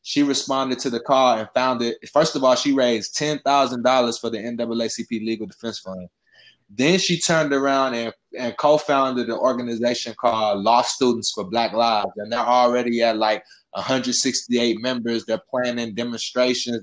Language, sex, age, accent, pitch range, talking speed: English, male, 20-39, American, 115-125 Hz, 155 wpm